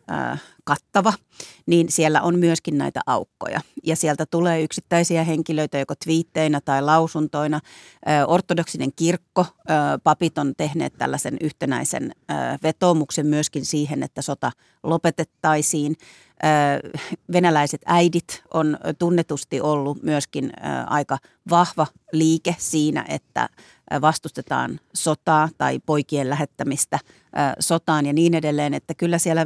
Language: Finnish